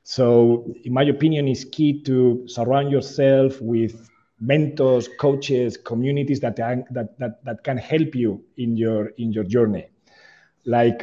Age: 40-59